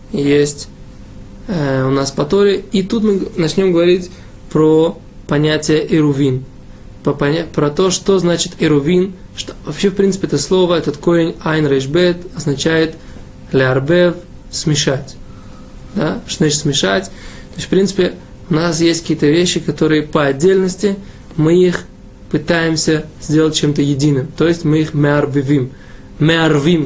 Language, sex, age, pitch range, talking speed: Russian, male, 20-39, 145-175 Hz, 130 wpm